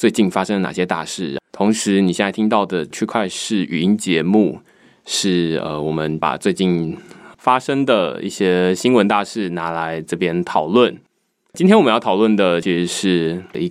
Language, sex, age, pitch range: Chinese, male, 20-39, 85-110 Hz